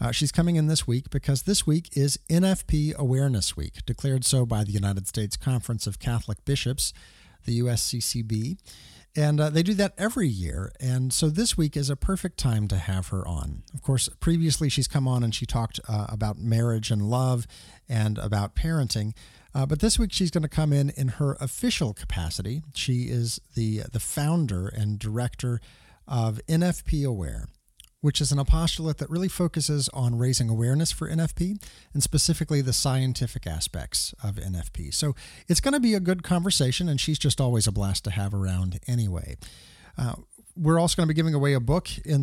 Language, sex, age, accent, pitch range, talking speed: English, male, 40-59, American, 110-155 Hz, 190 wpm